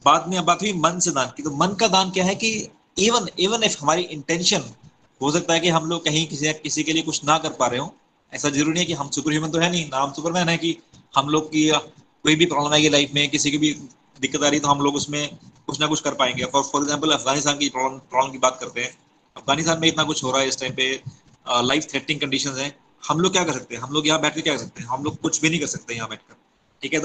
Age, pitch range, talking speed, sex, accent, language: 30-49, 145-170 Hz, 275 wpm, male, native, Hindi